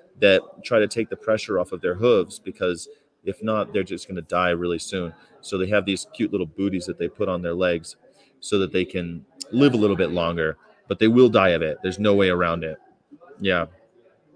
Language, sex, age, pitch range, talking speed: English, male, 30-49, 95-115 Hz, 225 wpm